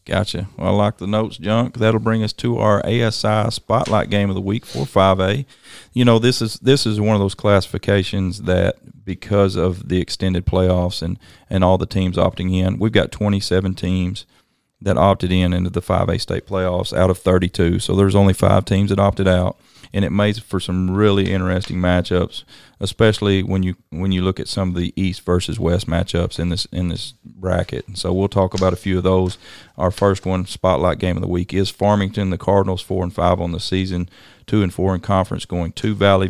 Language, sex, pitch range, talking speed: English, male, 90-100 Hz, 210 wpm